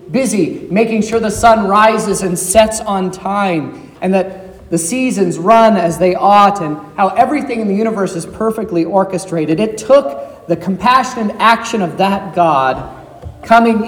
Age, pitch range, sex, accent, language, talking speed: 40-59, 165-225 Hz, male, American, English, 155 wpm